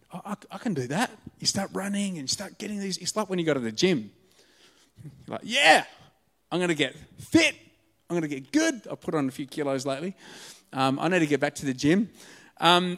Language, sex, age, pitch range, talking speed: English, male, 30-49, 135-205 Hz, 240 wpm